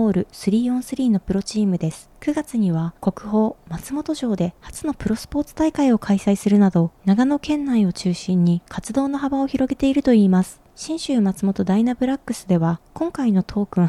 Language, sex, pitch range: Japanese, female, 195-270 Hz